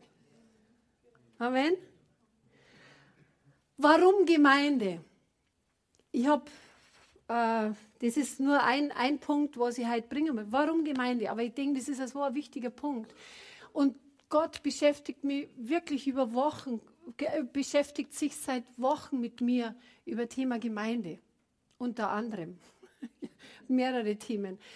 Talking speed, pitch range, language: 120 wpm, 225-280 Hz, German